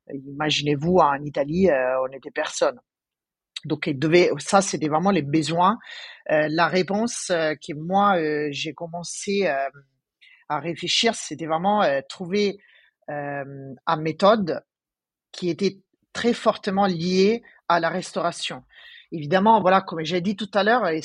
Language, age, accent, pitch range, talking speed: French, 40-59, French, 155-205 Hz, 115 wpm